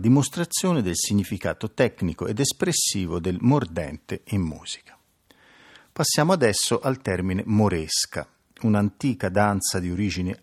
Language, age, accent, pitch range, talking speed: Italian, 50-69, native, 95-125 Hz, 110 wpm